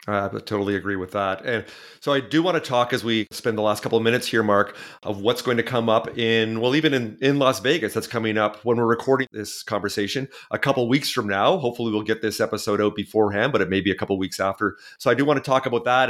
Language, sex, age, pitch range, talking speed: English, male, 30-49, 110-130 Hz, 275 wpm